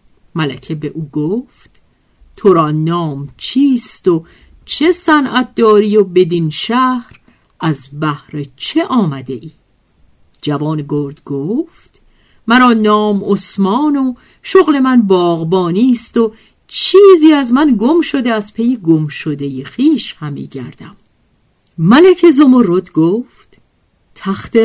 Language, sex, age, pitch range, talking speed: Persian, female, 50-69, 155-240 Hz, 115 wpm